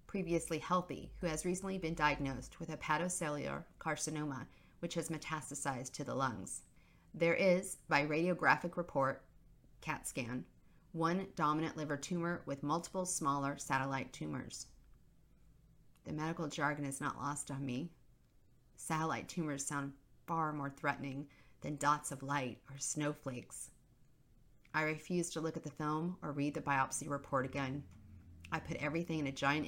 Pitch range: 135-155 Hz